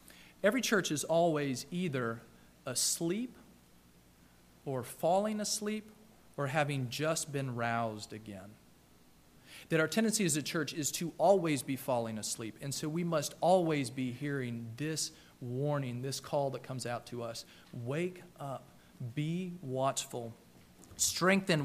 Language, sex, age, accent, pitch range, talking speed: English, male, 40-59, American, 115-175 Hz, 135 wpm